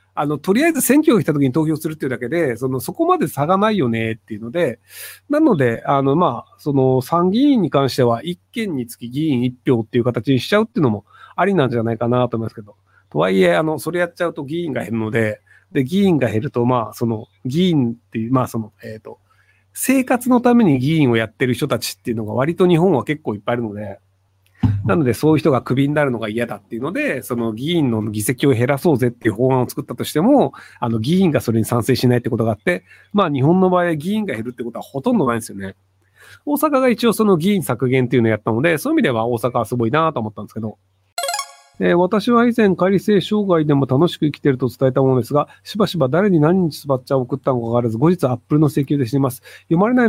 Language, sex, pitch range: Japanese, male, 120-175 Hz